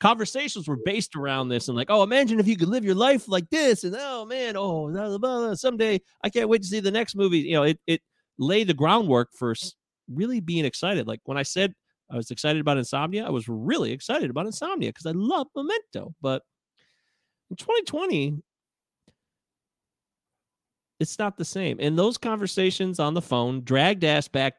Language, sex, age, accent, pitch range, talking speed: English, male, 30-49, American, 135-220 Hz, 185 wpm